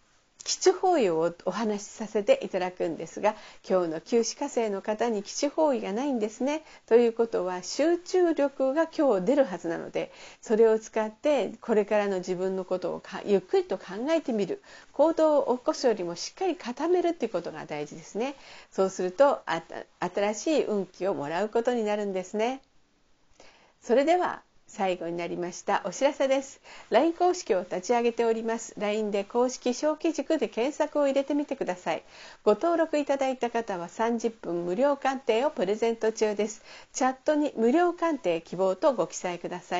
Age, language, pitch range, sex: 50-69, Japanese, 205-275 Hz, female